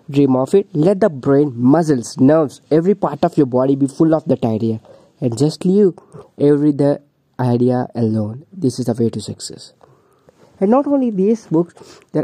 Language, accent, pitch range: English, Indian, 130-175 Hz